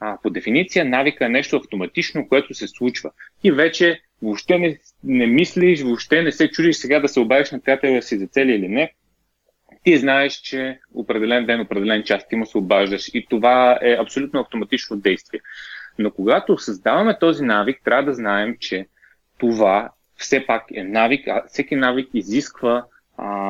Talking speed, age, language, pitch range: 170 wpm, 30-49, Bulgarian, 115-145 Hz